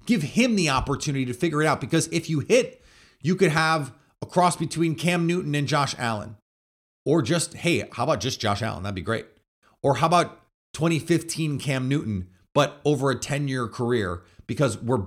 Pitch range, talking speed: 110-160 Hz, 185 wpm